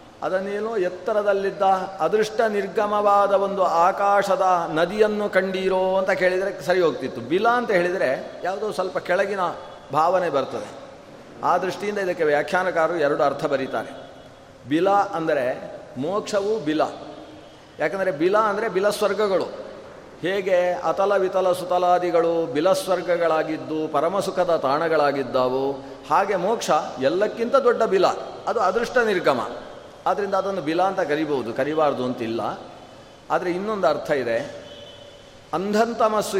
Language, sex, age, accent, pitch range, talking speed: Kannada, male, 40-59, native, 165-205 Hz, 105 wpm